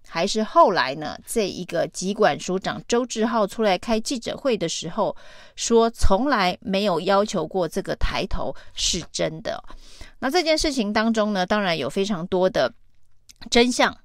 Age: 30-49